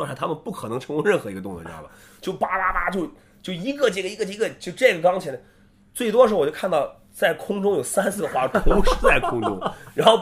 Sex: male